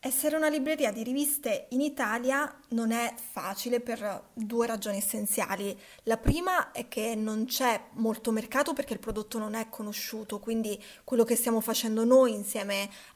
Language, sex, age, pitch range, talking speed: Italian, female, 20-39, 215-245 Hz, 160 wpm